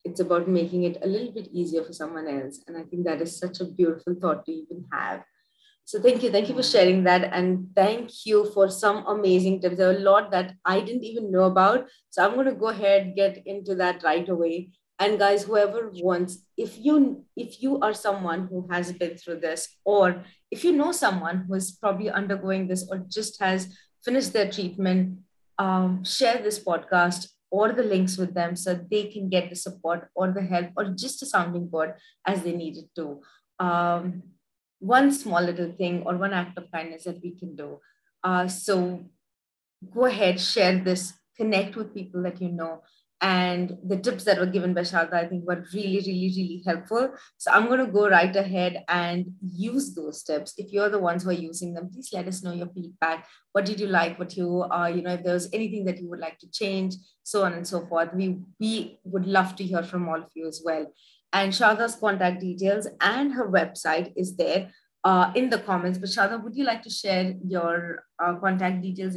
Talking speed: 210 wpm